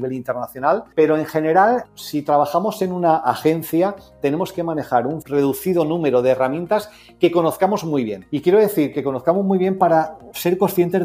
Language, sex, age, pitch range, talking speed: Spanish, male, 40-59, 130-170 Hz, 175 wpm